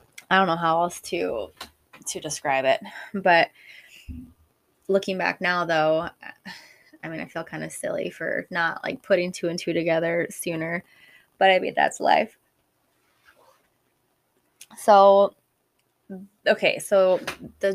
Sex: female